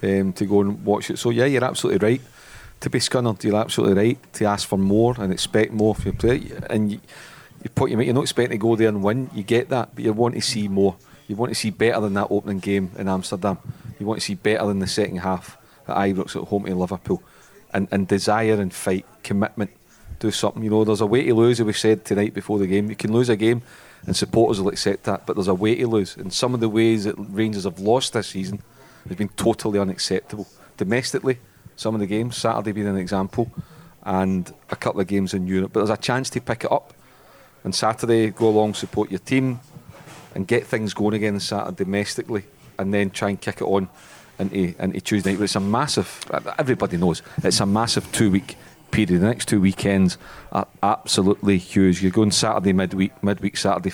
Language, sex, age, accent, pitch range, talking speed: English, male, 40-59, British, 95-115 Hz, 225 wpm